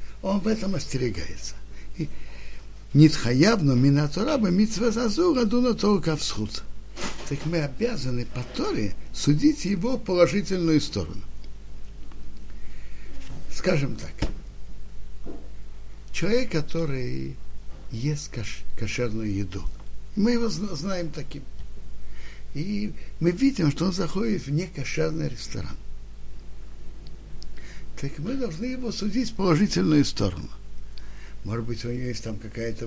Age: 60-79